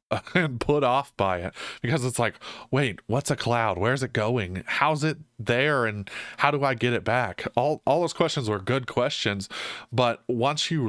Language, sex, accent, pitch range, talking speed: English, male, American, 105-135 Hz, 195 wpm